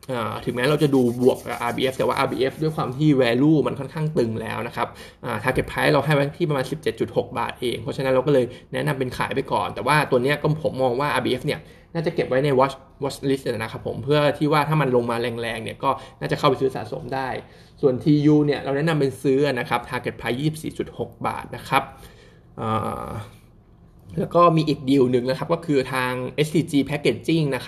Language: Thai